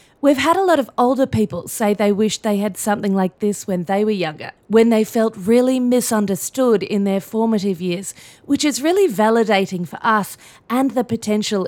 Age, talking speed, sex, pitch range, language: 30-49, 190 wpm, female, 190-230 Hz, English